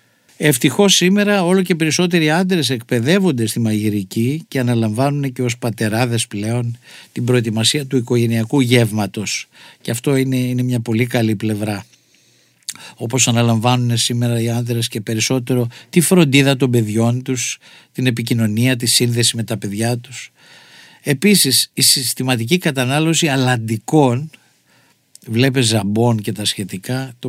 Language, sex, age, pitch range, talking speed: Greek, male, 50-69, 115-140 Hz, 130 wpm